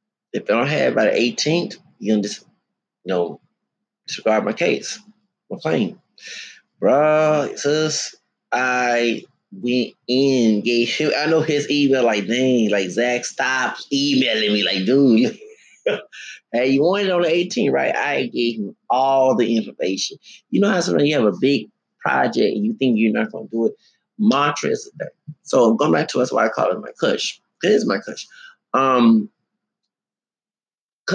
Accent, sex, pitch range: American, male, 110-155 Hz